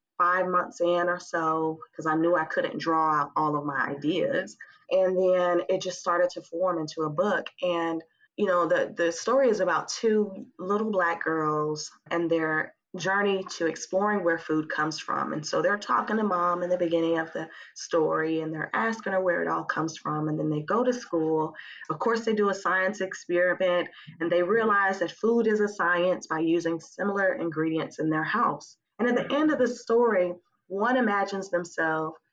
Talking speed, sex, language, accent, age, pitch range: 195 wpm, female, English, American, 20-39, 160-205 Hz